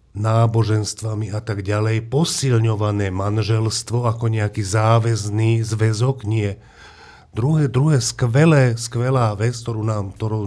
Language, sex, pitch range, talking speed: Slovak, male, 105-120 Hz, 95 wpm